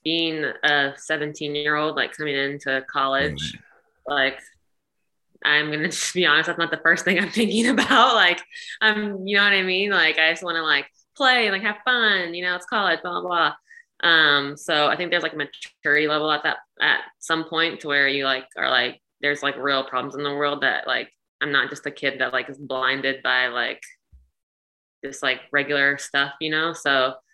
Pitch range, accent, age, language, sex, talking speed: 140-165 Hz, American, 20-39, English, female, 205 wpm